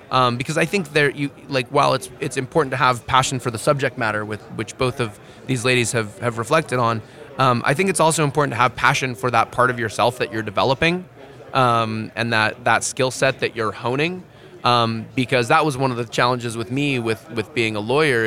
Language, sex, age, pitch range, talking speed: English, male, 20-39, 115-145 Hz, 225 wpm